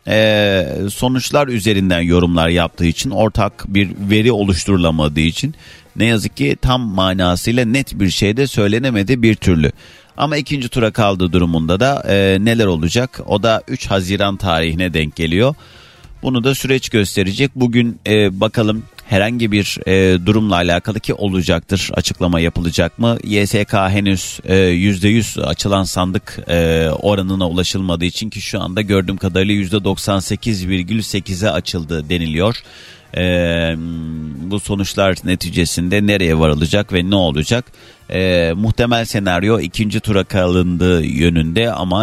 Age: 40-59